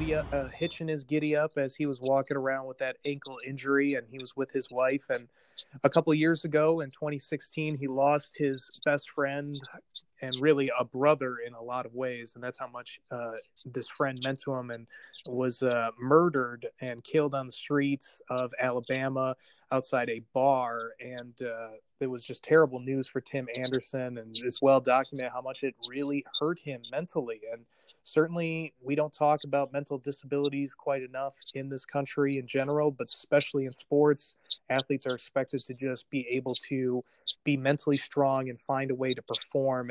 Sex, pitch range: male, 130-145 Hz